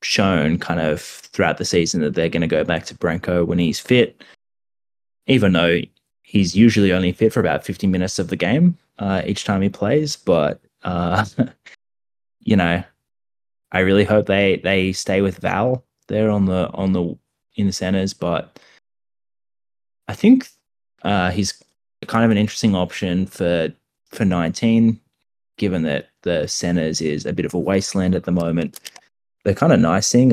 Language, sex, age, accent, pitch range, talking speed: English, male, 10-29, Australian, 85-110 Hz, 170 wpm